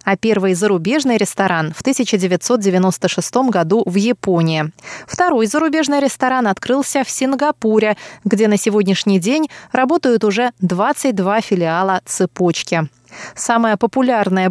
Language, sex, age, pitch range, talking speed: Russian, female, 20-39, 180-245 Hz, 110 wpm